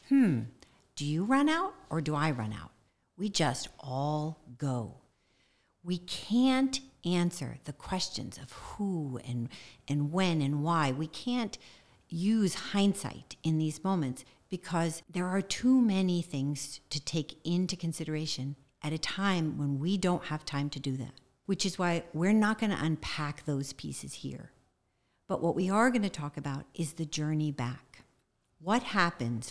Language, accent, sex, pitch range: English, American, female, 140-185 Hz